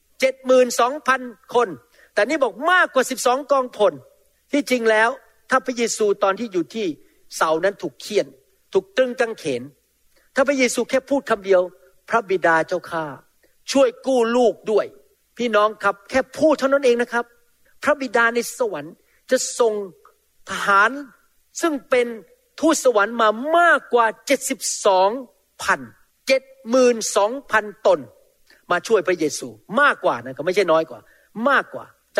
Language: Thai